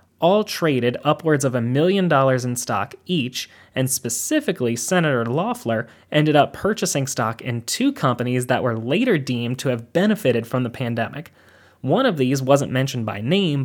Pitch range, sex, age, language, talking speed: 115-150 Hz, male, 20-39, English, 165 wpm